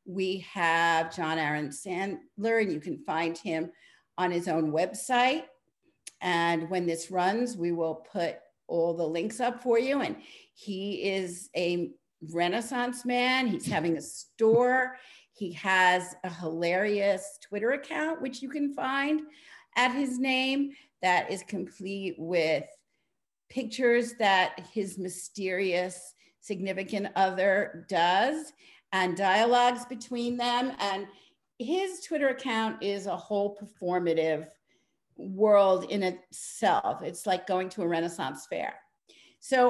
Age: 50-69